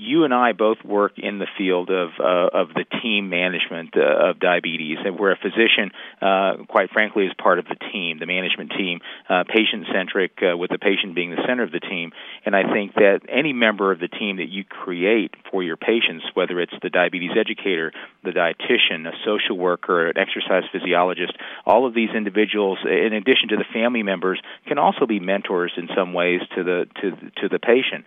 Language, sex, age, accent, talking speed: English, male, 40-59, American, 205 wpm